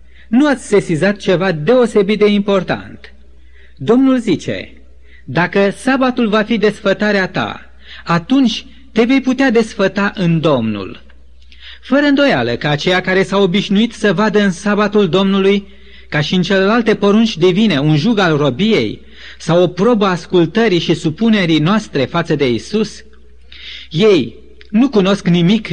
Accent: native